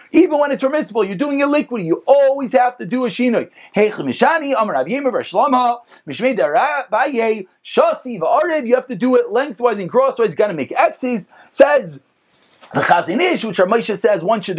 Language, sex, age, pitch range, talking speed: English, male, 30-49, 200-270 Hz, 155 wpm